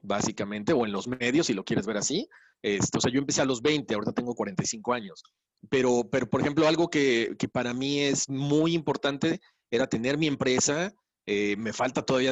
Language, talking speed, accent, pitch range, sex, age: Spanish, 205 wpm, Mexican, 115-150 Hz, male, 40-59